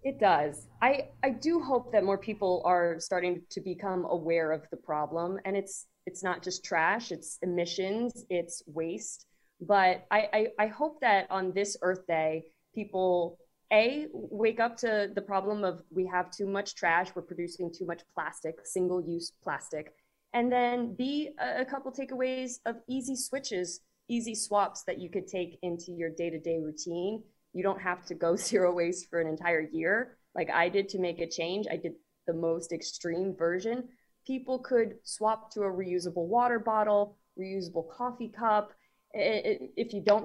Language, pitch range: English, 170-220 Hz